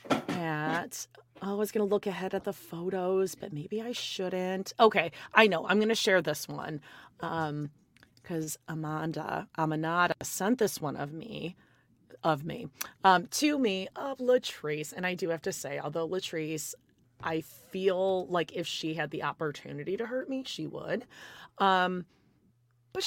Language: English